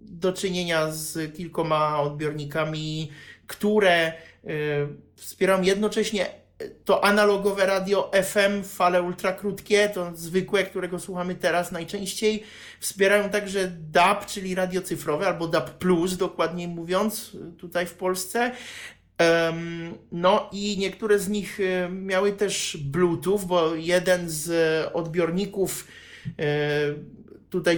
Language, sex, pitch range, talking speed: Polish, male, 175-205 Hz, 100 wpm